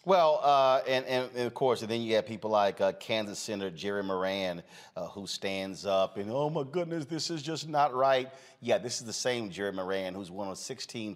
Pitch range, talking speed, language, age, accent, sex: 95-120 Hz, 225 wpm, English, 40-59, American, male